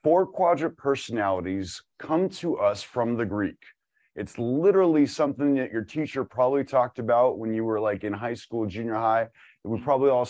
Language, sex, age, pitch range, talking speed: English, male, 30-49, 110-150 Hz, 180 wpm